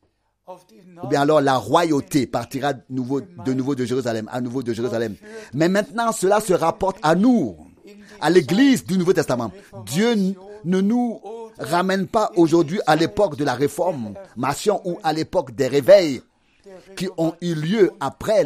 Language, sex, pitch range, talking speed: French, male, 150-205 Hz, 165 wpm